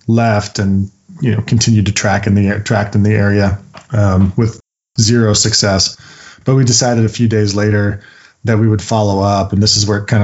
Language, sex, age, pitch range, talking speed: English, male, 20-39, 100-110 Hz, 200 wpm